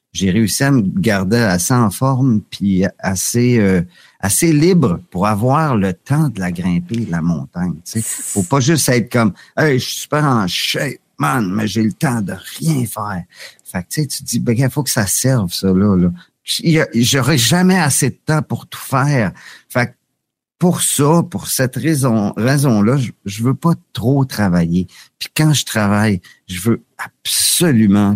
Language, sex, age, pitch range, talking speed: French, male, 50-69, 95-135 Hz, 190 wpm